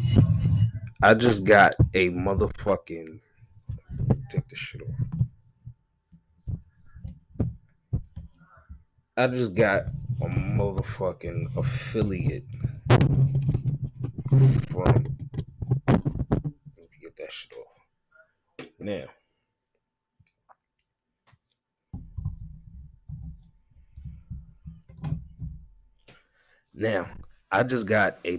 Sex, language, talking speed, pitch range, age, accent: male, English, 55 wpm, 85-130 Hz, 20-39, American